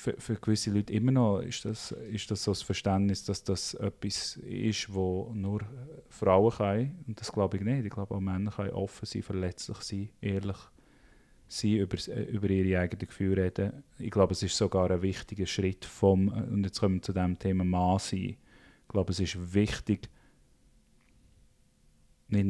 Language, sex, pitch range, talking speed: German, male, 95-115 Hz, 180 wpm